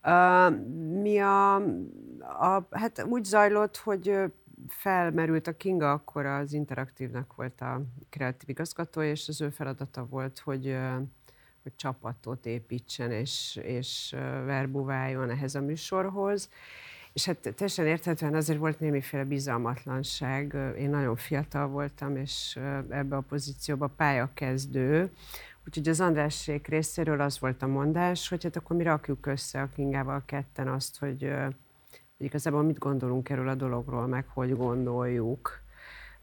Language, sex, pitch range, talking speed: Hungarian, female, 135-160 Hz, 130 wpm